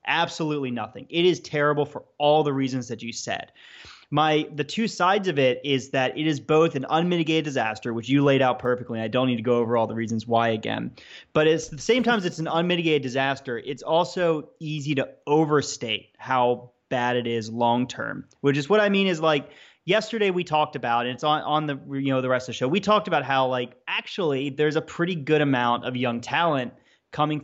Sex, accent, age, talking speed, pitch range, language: male, American, 30-49, 220 wpm, 125-160 Hz, English